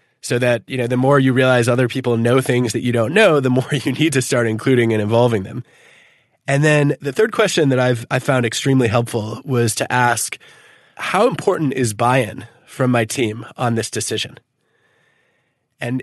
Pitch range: 120-155 Hz